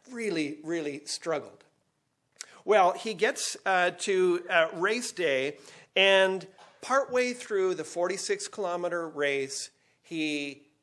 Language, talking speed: English, 100 wpm